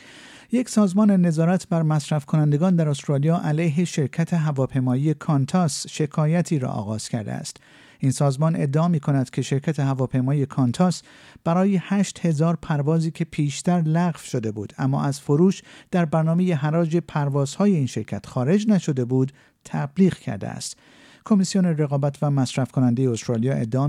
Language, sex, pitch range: Persian, male, 135-170 Hz